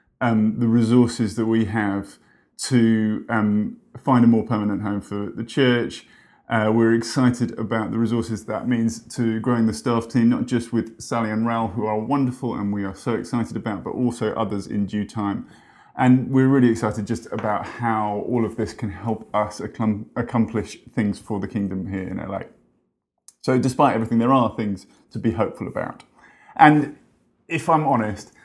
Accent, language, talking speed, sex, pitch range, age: British, English, 180 wpm, male, 105-120 Hz, 30-49